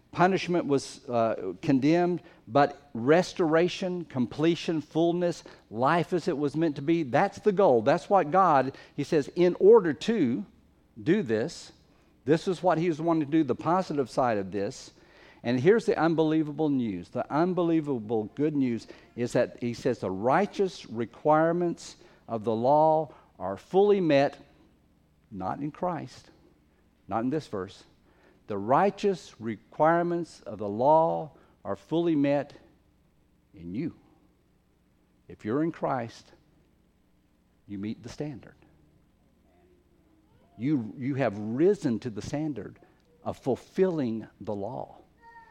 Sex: male